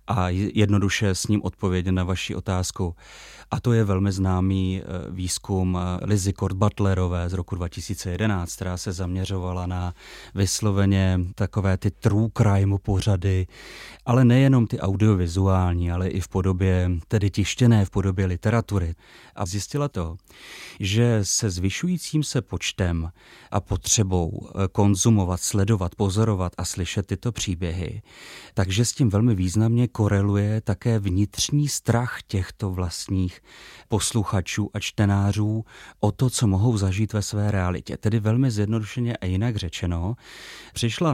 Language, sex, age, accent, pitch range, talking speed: Czech, male, 30-49, native, 95-110 Hz, 130 wpm